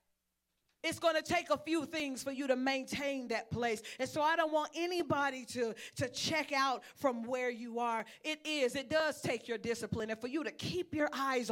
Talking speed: 215 wpm